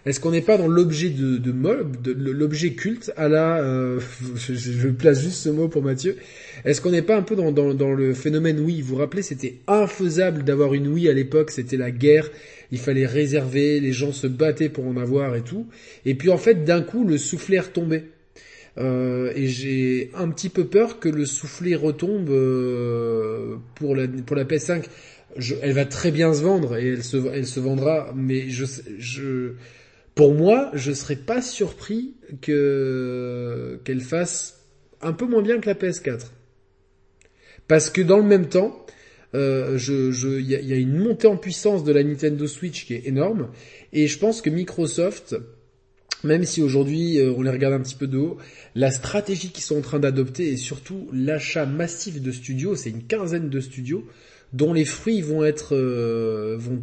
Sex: male